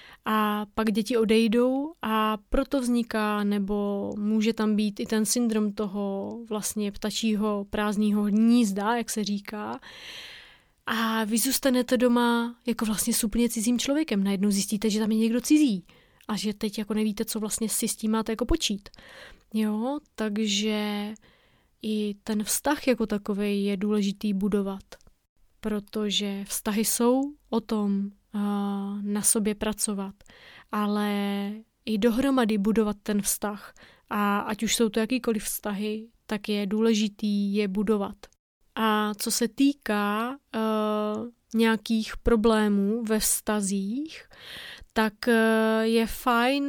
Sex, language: female, Czech